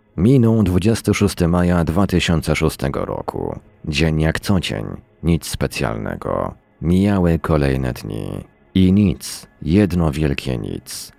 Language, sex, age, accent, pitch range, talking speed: Polish, male, 40-59, native, 85-105 Hz, 100 wpm